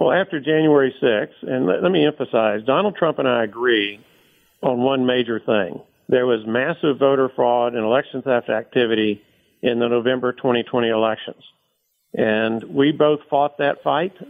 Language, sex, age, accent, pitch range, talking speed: English, male, 50-69, American, 125-140 Hz, 155 wpm